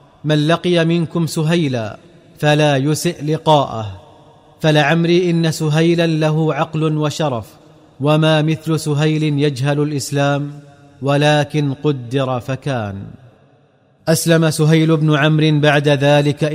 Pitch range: 145-160 Hz